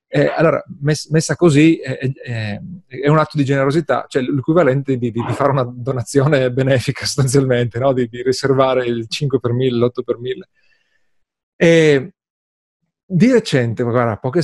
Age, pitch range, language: 30-49, 130-175 Hz, Italian